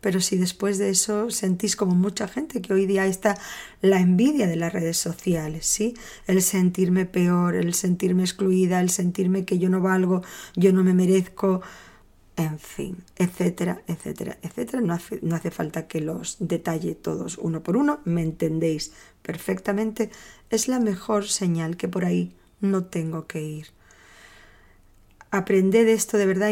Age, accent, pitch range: 20-39, Spanish, 175-210 Hz